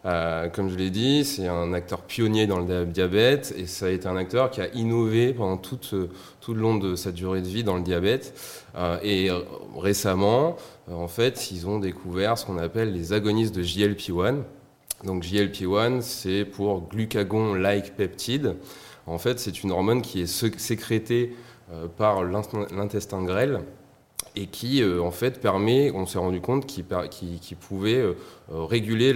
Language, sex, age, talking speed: French, male, 20-39, 165 wpm